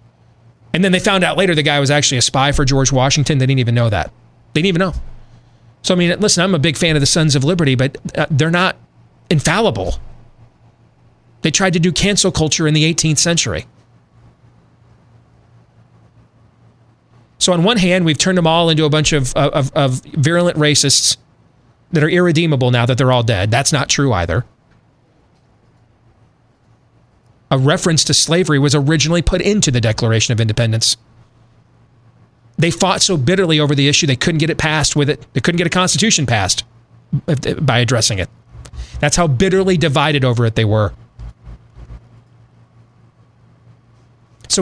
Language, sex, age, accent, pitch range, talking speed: English, male, 30-49, American, 120-165 Hz, 165 wpm